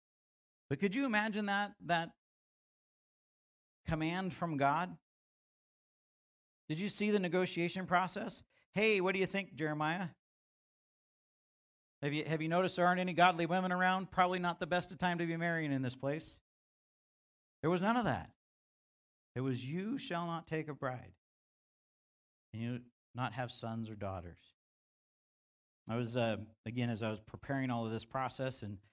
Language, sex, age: English, male, 50-69